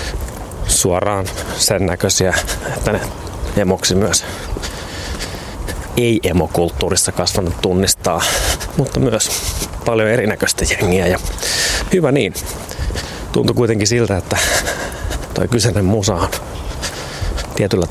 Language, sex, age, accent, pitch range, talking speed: Finnish, male, 30-49, native, 90-105 Hz, 90 wpm